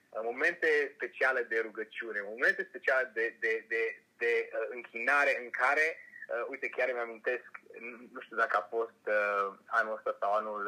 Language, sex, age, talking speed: Romanian, male, 30-49, 155 wpm